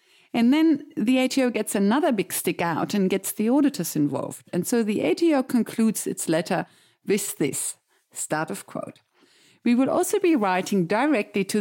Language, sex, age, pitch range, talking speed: English, female, 50-69, 175-280 Hz, 170 wpm